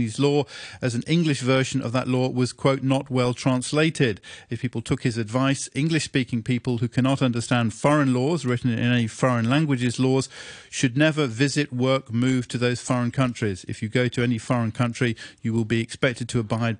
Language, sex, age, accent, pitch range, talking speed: English, male, 40-59, British, 120-145 Hz, 195 wpm